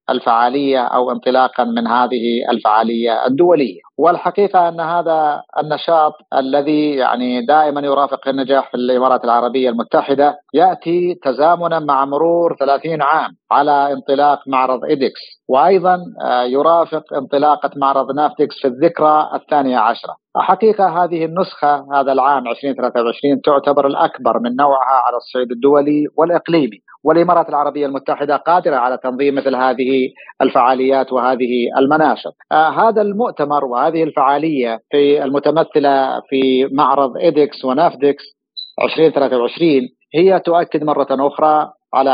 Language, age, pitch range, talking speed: Arabic, 50-69, 130-160 Hz, 115 wpm